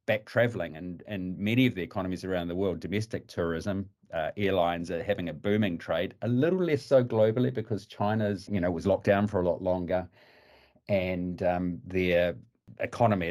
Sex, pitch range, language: male, 90-115 Hz, English